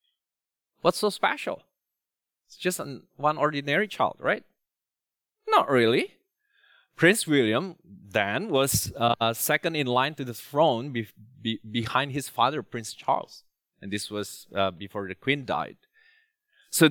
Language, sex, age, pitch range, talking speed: English, male, 20-39, 105-145 Hz, 130 wpm